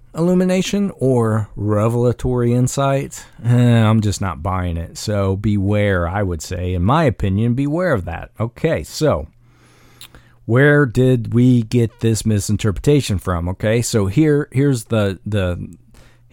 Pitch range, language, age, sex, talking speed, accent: 100-125 Hz, English, 40-59, male, 130 wpm, American